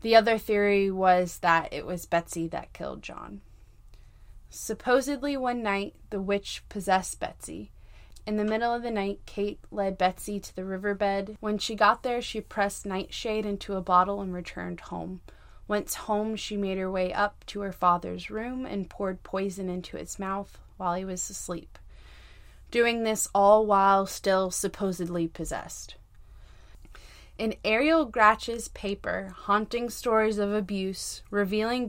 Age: 20-39